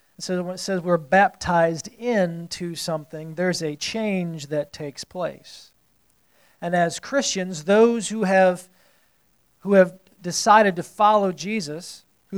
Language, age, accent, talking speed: English, 40-59, American, 115 wpm